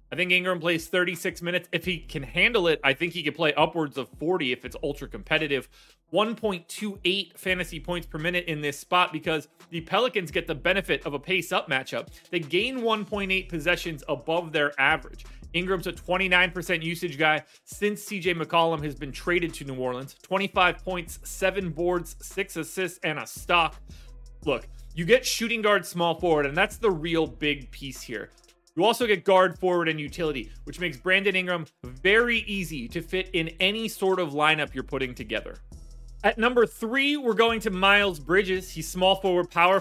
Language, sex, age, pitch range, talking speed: English, male, 30-49, 155-190 Hz, 180 wpm